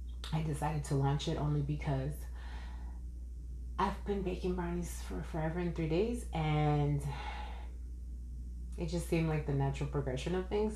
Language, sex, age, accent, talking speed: English, female, 30-49, American, 145 wpm